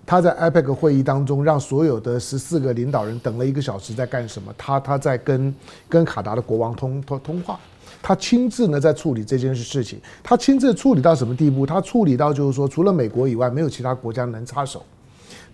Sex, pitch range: male, 130-175 Hz